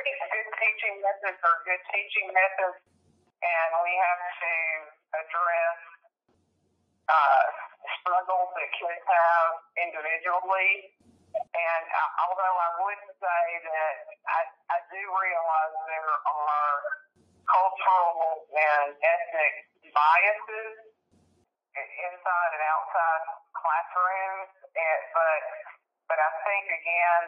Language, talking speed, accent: English, 100 wpm, American